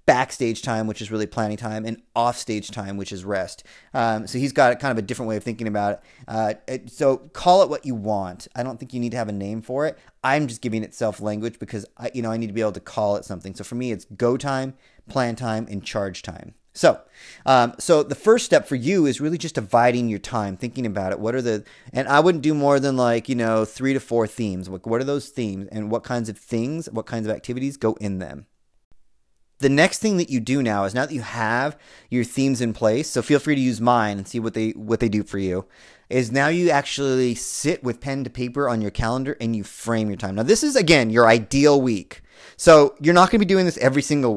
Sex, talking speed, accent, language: male, 255 wpm, American, English